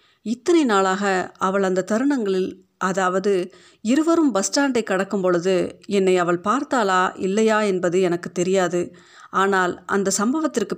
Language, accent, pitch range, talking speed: Tamil, native, 185-220 Hz, 115 wpm